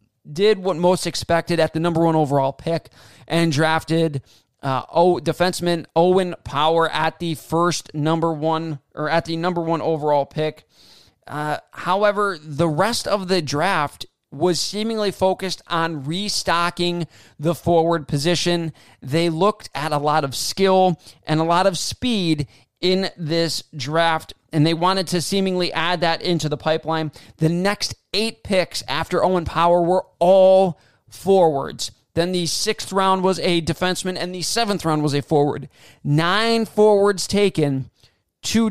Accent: American